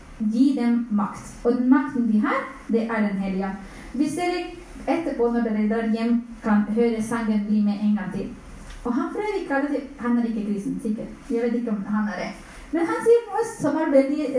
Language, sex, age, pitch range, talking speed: English, female, 30-49, 220-280 Hz, 210 wpm